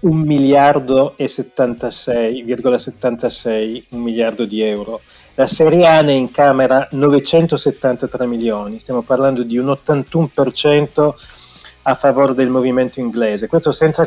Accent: native